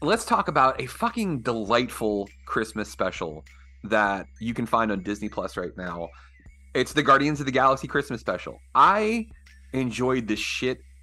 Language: English